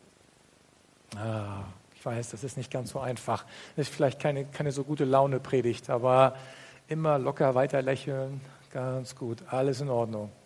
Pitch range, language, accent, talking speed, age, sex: 120-150 Hz, German, German, 155 wpm, 50-69, male